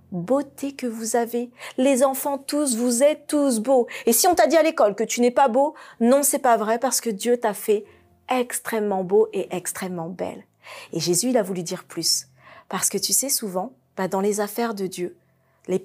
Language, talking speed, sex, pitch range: French, 210 wpm, female, 210-310 Hz